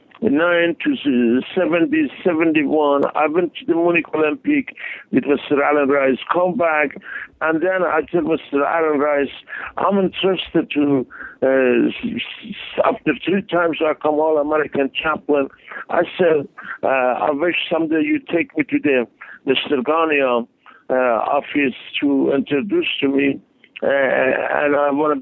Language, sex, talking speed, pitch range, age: English, male, 140 wpm, 130-160 Hz, 60-79